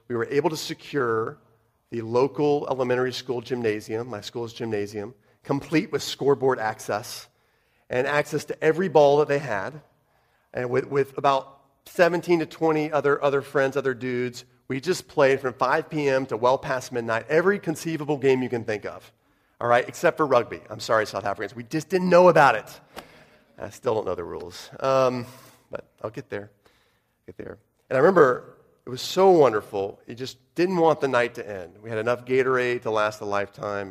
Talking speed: 185 wpm